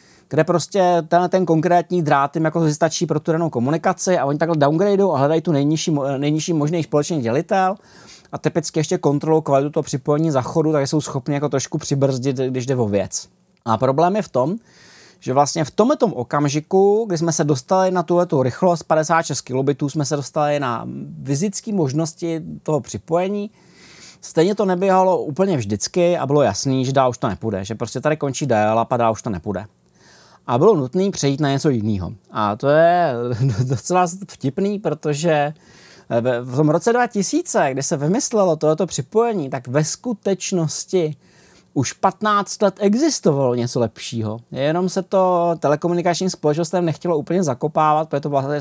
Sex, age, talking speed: male, 30-49, 160 wpm